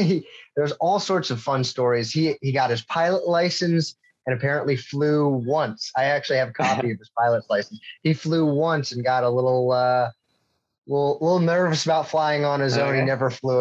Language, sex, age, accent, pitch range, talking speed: English, male, 30-49, American, 120-160 Hz, 200 wpm